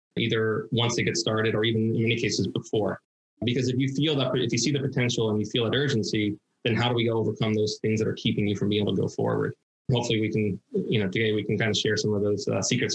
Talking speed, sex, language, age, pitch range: 275 wpm, male, English, 20-39, 105-120 Hz